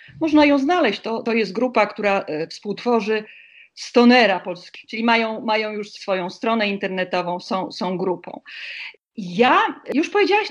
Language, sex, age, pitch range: Polish, female, 40-59, 215-295 Hz